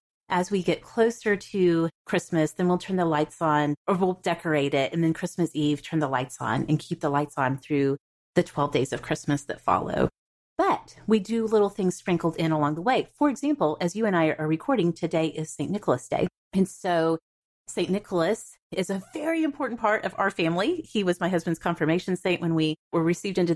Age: 30-49